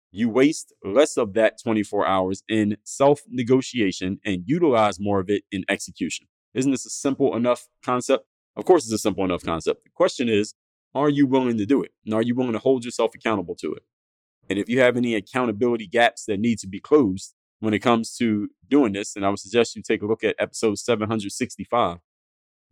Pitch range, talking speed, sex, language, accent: 100-125 Hz, 205 wpm, male, English, American